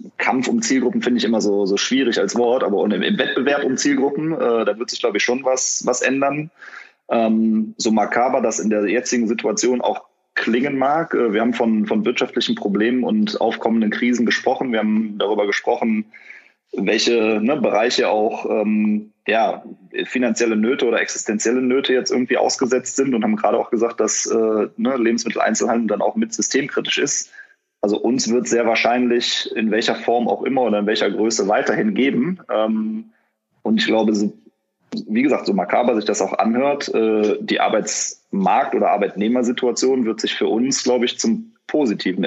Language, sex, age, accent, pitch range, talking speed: German, male, 30-49, German, 110-130 Hz, 170 wpm